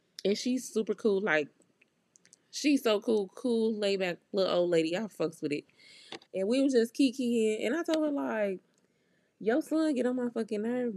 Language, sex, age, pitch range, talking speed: English, female, 20-39, 165-230 Hz, 190 wpm